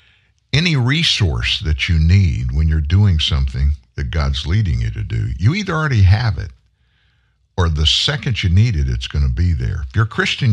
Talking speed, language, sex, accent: 195 wpm, English, male, American